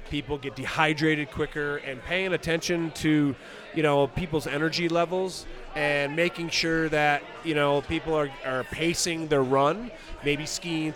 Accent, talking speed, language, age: American, 150 wpm, English, 30-49